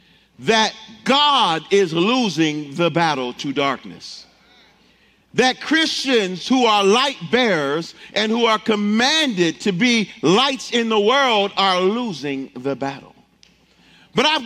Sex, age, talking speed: male, 50-69, 125 wpm